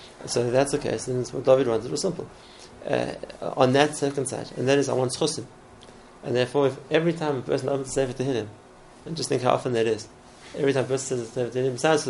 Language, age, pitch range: English, 30-49, 120-140 Hz